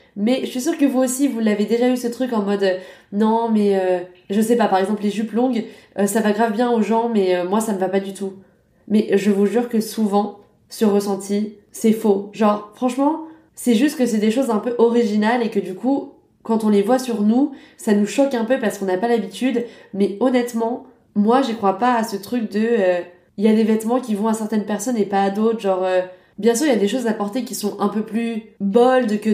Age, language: 20-39, French